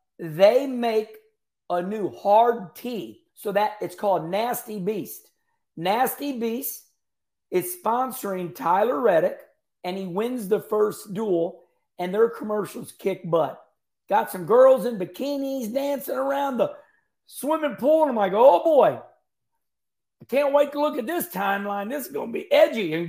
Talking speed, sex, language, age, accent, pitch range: 155 wpm, male, English, 50-69, American, 200-255 Hz